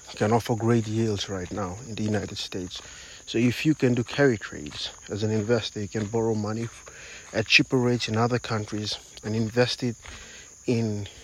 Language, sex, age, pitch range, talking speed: English, male, 50-69, 105-125 Hz, 180 wpm